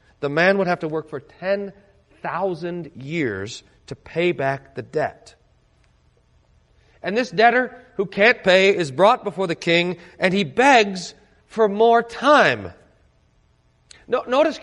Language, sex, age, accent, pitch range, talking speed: English, male, 40-59, American, 155-230 Hz, 130 wpm